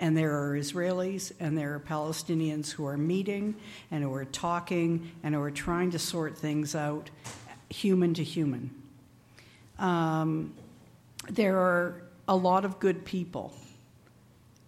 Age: 60-79